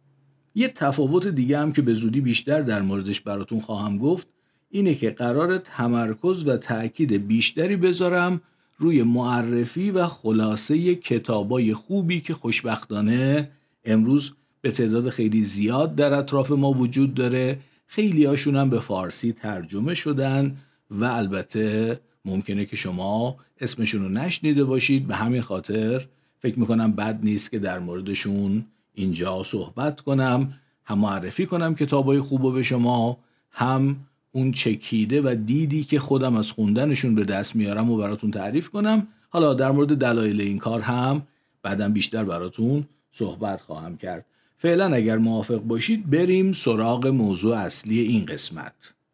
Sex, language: male, Persian